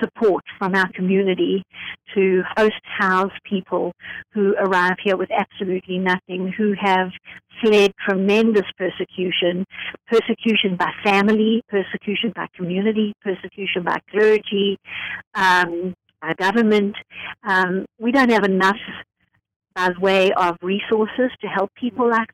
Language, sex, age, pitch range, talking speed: English, female, 60-79, 185-210 Hz, 120 wpm